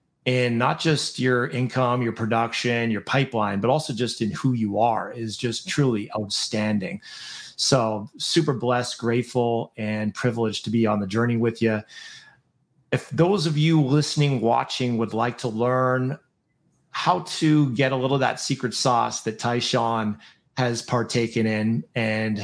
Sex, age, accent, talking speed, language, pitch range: male, 30-49, American, 155 wpm, English, 115-140 Hz